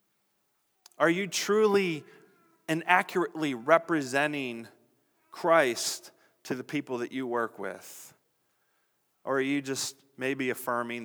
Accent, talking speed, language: American, 110 wpm, English